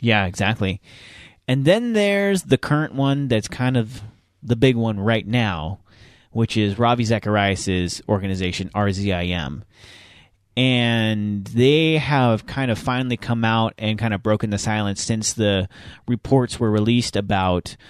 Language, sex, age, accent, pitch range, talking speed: English, male, 30-49, American, 100-120 Hz, 140 wpm